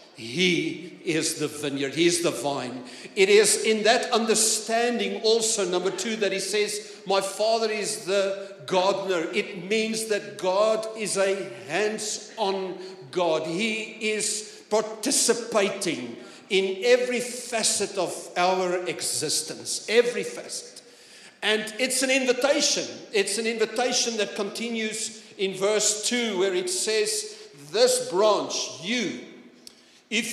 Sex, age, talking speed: male, 50-69, 125 wpm